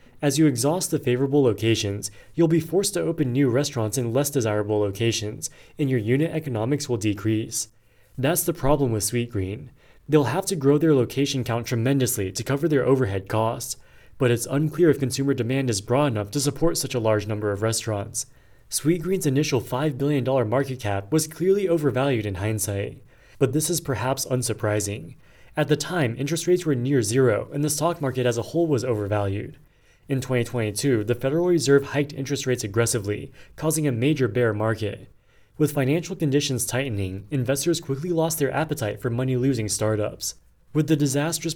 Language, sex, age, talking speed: English, male, 20-39, 175 wpm